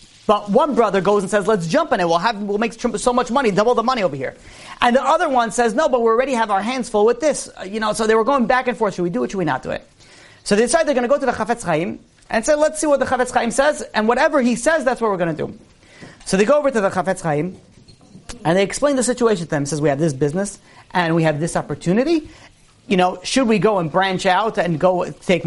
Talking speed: 285 wpm